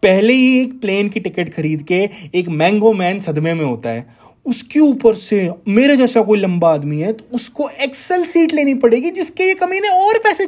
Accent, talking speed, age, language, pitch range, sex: native, 200 wpm, 20-39, Hindi, 155-225 Hz, male